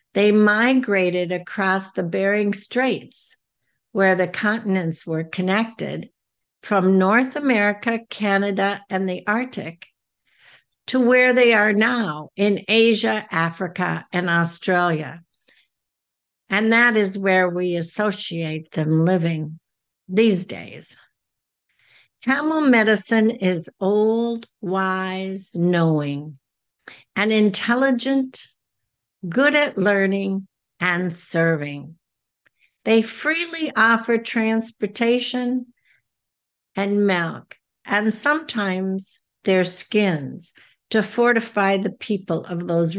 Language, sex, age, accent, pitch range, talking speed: English, female, 60-79, American, 180-230 Hz, 95 wpm